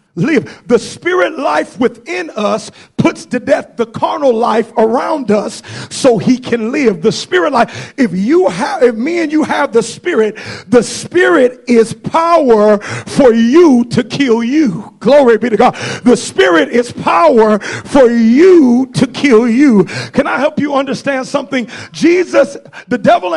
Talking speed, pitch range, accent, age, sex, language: 160 wpm, 215-290 Hz, American, 50-69, male, English